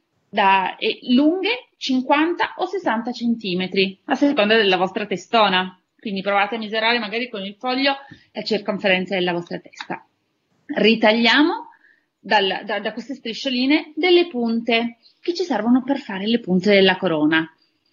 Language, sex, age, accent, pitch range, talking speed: Italian, female, 30-49, native, 190-245 Hz, 135 wpm